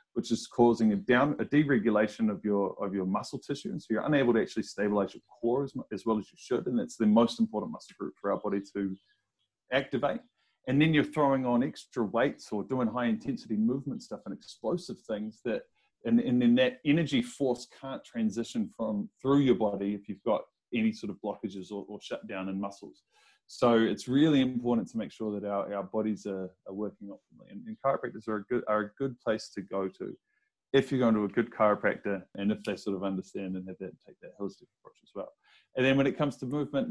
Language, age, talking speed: English, 30-49, 225 wpm